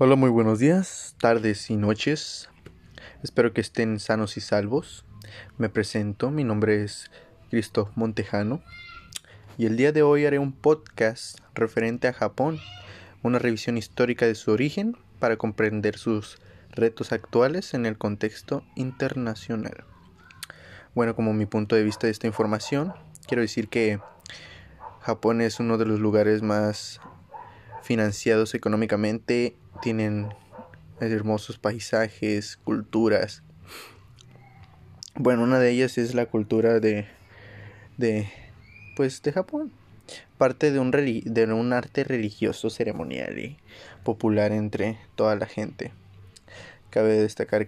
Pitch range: 105-120 Hz